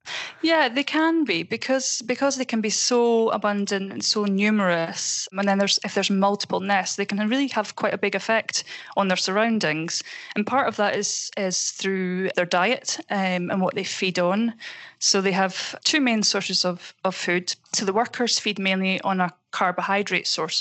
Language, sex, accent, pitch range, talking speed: English, female, British, 180-210 Hz, 190 wpm